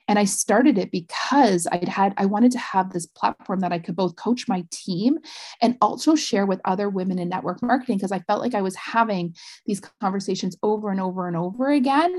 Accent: American